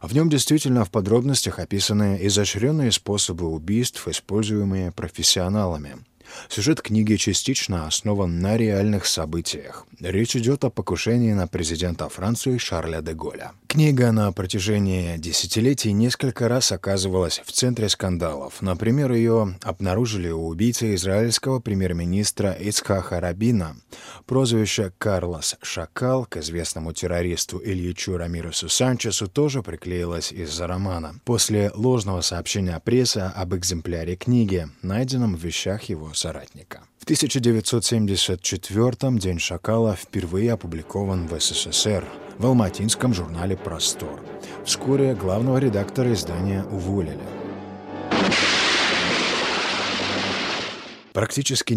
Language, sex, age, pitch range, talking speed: Romanian, male, 20-39, 90-115 Hz, 105 wpm